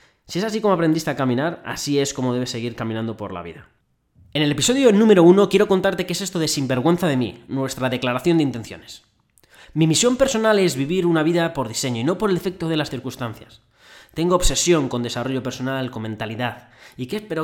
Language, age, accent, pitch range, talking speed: Spanish, 20-39, Spanish, 110-155 Hz, 210 wpm